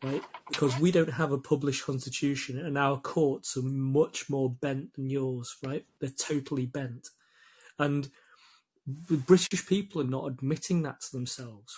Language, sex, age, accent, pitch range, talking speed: English, male, 30-49, British, 130-160 Hz, 160 wpm